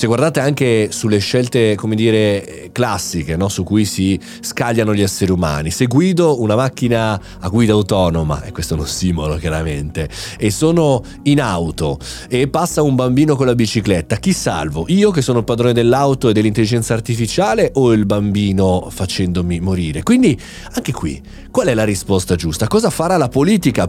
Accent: native